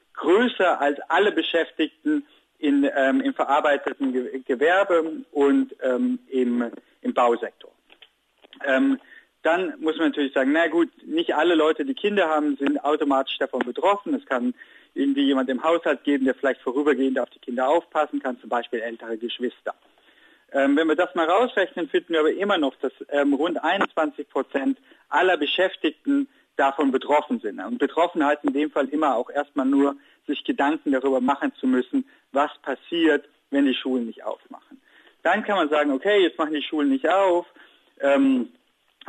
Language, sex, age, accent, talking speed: German, male, 50-69, German, 160 wpm